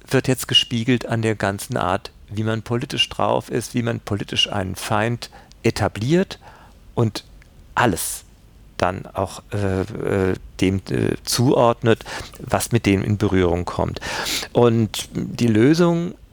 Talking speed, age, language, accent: 130 wpm, 50-69, German, German